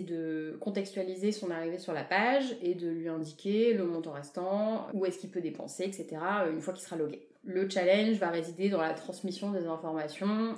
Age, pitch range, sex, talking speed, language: 30-49, 160-190 Hz, female, 195 wpm, French